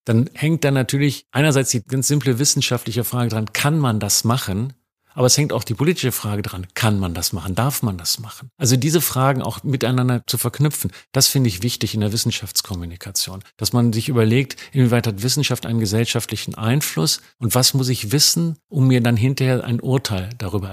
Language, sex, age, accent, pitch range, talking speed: German, male, 50-69, German, 110-135 Hz, 195 wpm